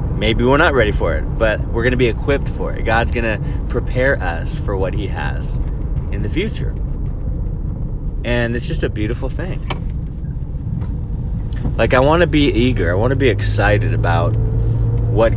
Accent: American